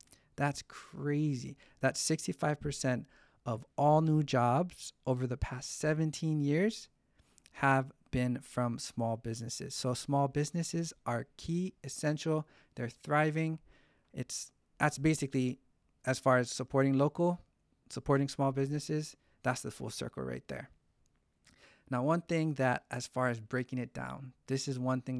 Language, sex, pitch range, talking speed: English, male, 120-145 Hz, 135 wpm